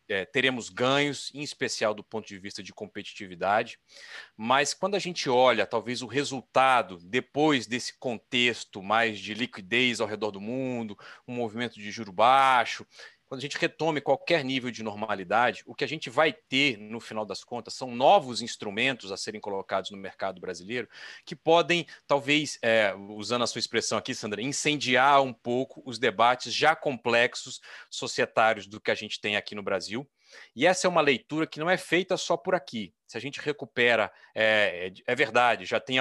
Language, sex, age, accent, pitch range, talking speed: Portuguese, male, 40-59, Brazilian, 110-145 Hz, 180 wpm